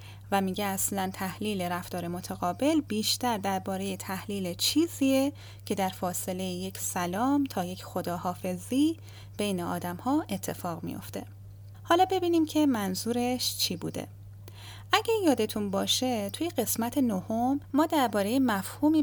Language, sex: Persian, female